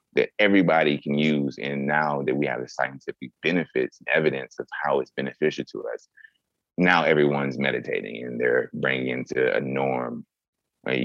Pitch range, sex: 65-80 Hz, male